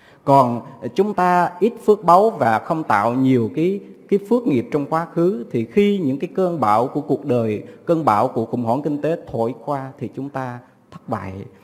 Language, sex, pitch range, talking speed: Vietnamese, male, 120-175 Hz, 205 wpm